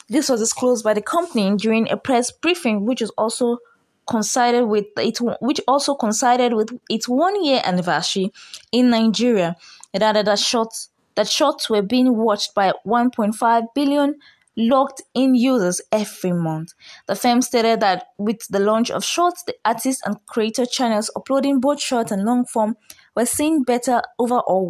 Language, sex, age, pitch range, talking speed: English, female, 20-39, 205-255 Hz, 165 wpm